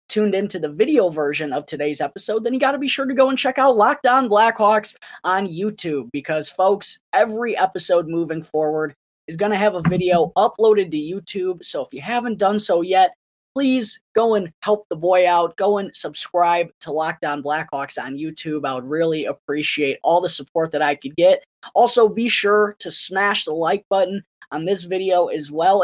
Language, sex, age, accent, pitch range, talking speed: English, female, 20-39, American, 155-210 Hz, 195 wpm